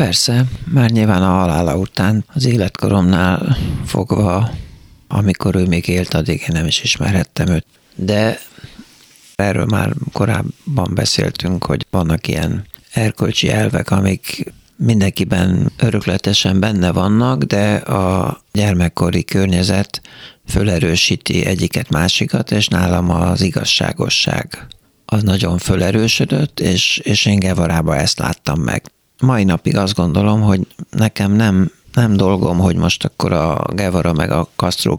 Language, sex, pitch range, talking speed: Hungarian, male, 90-110 Hz, 125 wpm